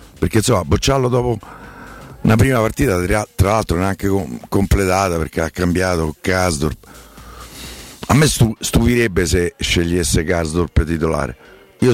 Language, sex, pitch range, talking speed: Italian, male, 85-110 Hz, 120 wpm